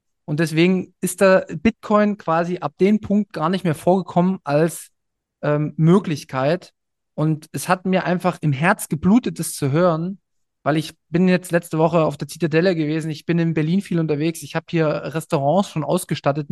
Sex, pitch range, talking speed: male, 155-195 Hz, 180 wpm